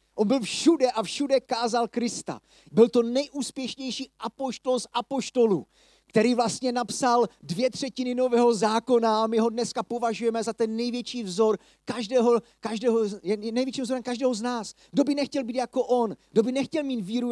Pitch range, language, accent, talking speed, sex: 200-250 Hz, Czech, native, 165 wpm, male